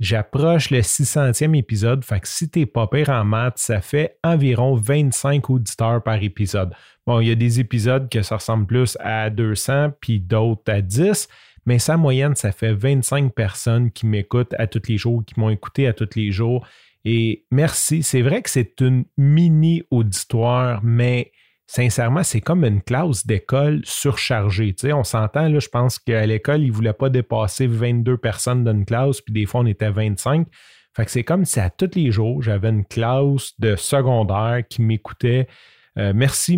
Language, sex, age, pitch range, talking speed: French, male, 30-49, 110-135 Hz, 185 wpm